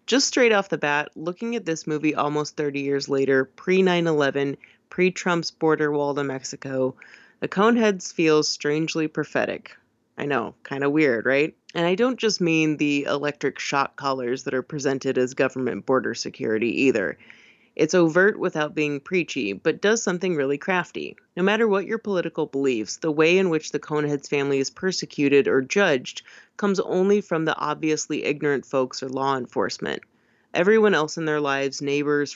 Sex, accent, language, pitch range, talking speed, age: female, American, English, 140-170 Hz, 165 wpm, 30-49